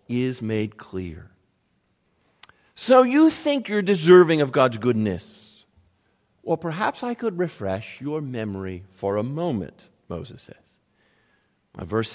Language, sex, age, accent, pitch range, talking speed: English, male, 50-69, American, 125-180 Hz, 120 wpm